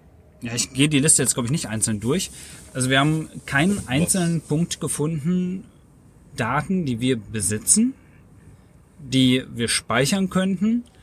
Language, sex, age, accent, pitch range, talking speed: German, male, 30-49, German, 120-150 Hz, 140 wpm